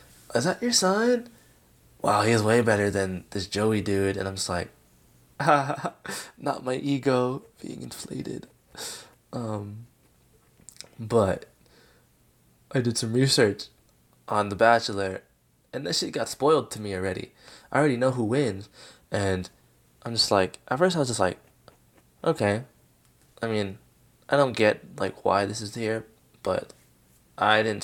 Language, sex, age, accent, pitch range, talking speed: English, male, 20-39, American, 100-130 Hz, 145 wpm